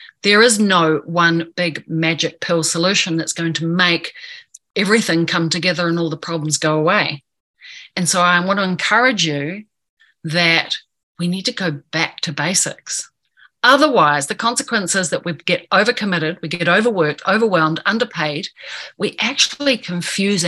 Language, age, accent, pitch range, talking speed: English, 40-59, Australian, 165-215 Hz, 150 wpm